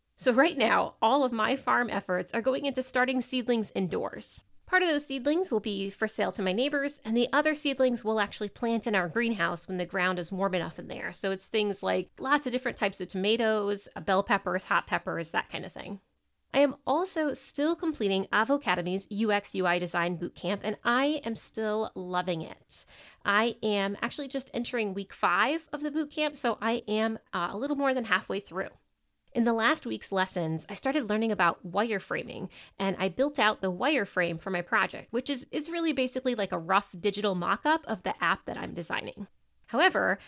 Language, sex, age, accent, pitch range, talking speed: English, female, 30-49, American, 190-260 Hz, 200 wpm